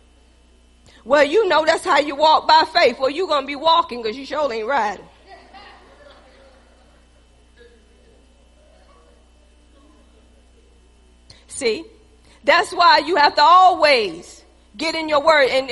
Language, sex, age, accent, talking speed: English, female, 40-59, American, 120 wpm